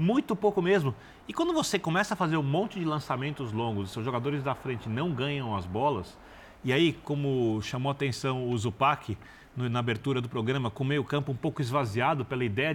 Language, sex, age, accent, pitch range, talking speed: Portuguese, male, 40-59, Brazilian, 125-185 Hz, 200 wpm